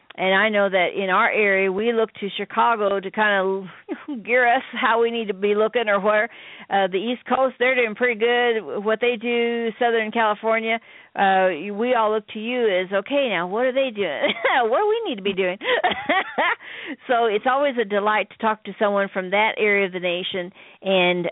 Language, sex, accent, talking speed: English, female, American, 205 wpm